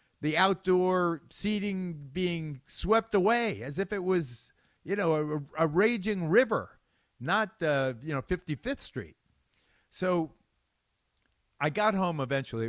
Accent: American